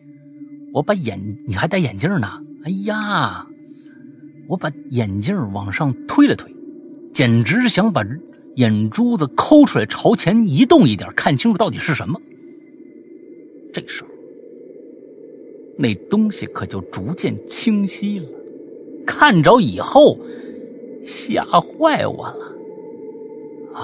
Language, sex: Chinese, male